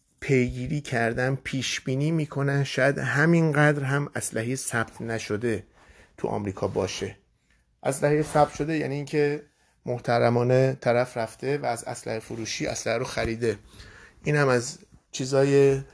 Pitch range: 110-135 Hz